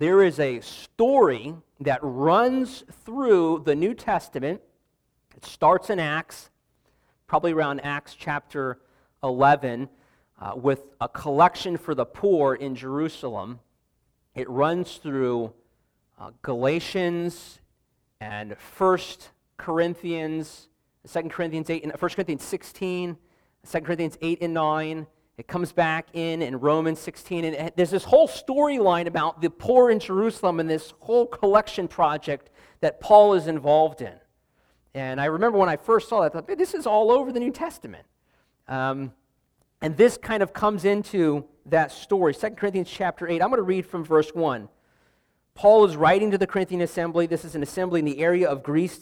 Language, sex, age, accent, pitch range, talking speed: English, male, 40-59, American, 155-210 Hz, 155 wpm